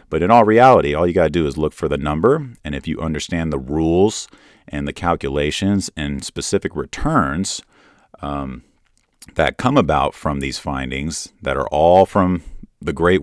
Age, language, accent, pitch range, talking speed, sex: 40-59, English, American, 75-90 Hz, 175 wpm, male